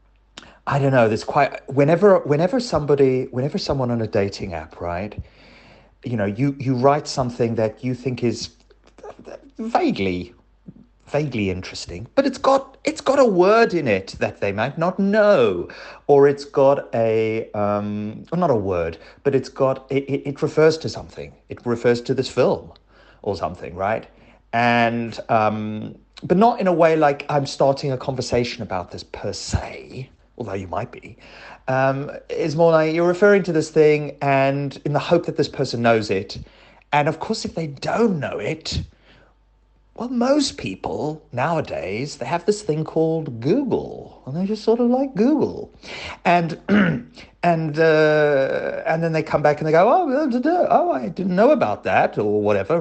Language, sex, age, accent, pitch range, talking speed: English, male, 30-49, British, 120-175 Hz, 170 wpm